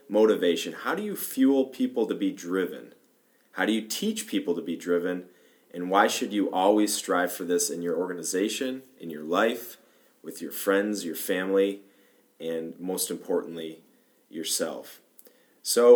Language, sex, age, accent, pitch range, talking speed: English, male, 30-49, American, 90-115 Hz, 155 wpm